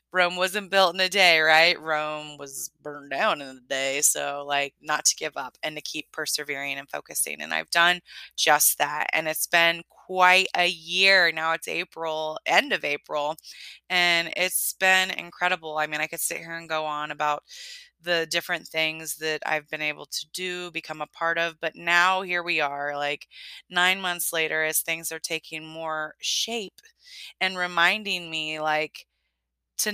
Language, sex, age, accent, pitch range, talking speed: English, female, 20-39, American, 155-180 Hz, 180 wpm